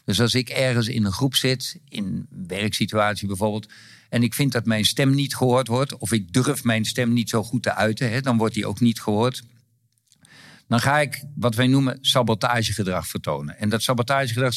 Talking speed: 200 wpm